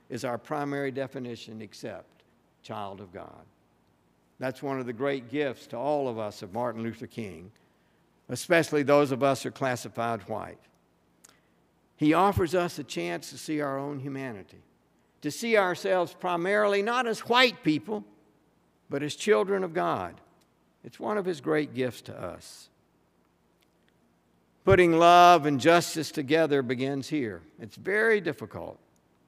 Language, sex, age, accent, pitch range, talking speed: English, male, 60-79, American, 120-155 Hz, 145 wpm